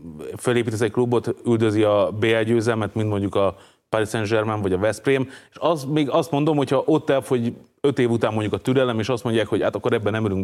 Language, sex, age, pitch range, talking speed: Hungarian, male, 30-49, 95-115 Hz, 230 wpm